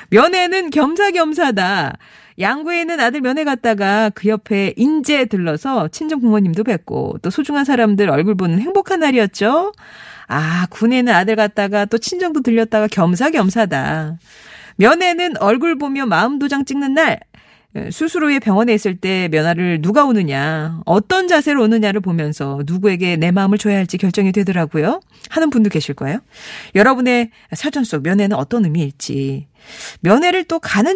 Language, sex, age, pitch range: Korean, female, 40-59, 175-275 Hz